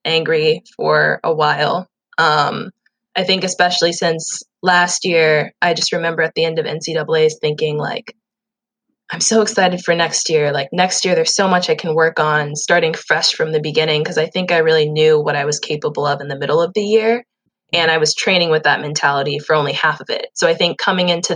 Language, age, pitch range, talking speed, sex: English, 20-39, 155-200 Hz, 215 wpm, female